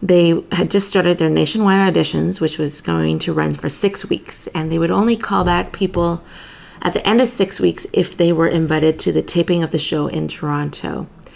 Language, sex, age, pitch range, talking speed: English, female, 30-49, 155-190 Hz, 210 wpm